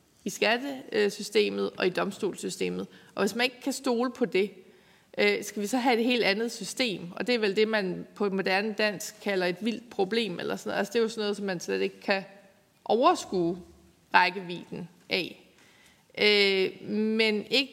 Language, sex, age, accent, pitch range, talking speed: Danish, female, 20-39, native, 195-240 Hz, 180 wpm